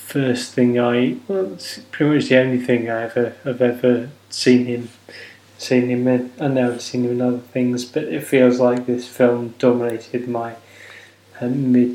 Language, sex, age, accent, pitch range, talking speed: English, male, 10-29, British, 125-145 Hz, 185 wpm